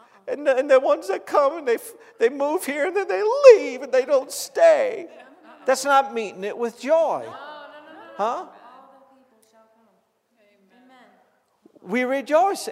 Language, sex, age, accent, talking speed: English, male, 50-69, American, 135 wpm